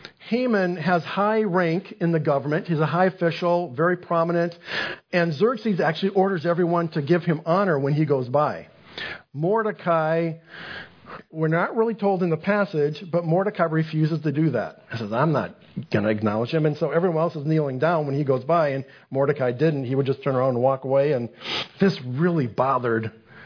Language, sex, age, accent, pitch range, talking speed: English, male, 50-69, American, 160-200 Hz, 190 wpm